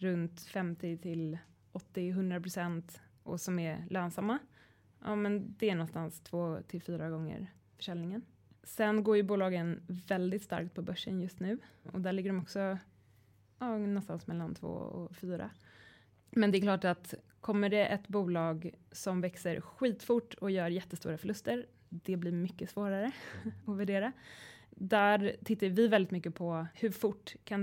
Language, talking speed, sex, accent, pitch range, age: Swedish, 150 wpm, female, native, 170-210 Hz, 20-39